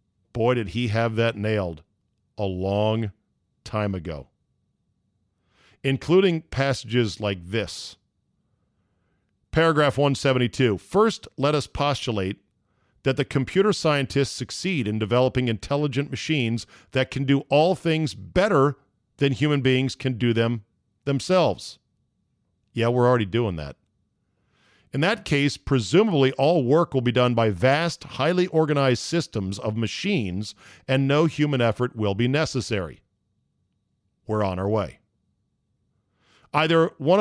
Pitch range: 105-145 Hz